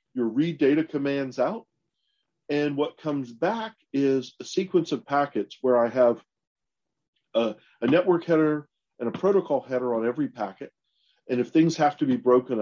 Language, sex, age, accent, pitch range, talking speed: English, male, 40-59, American, 115-145 Hz, 165 wpm